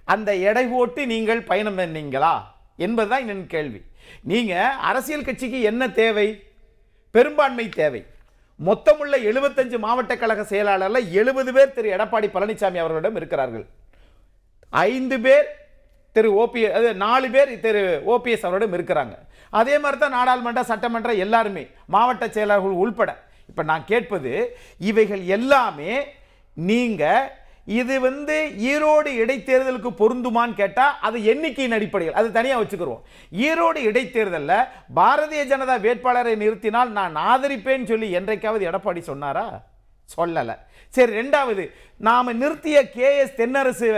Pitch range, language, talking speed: 210-270 Hz, Tamil, 85 wpm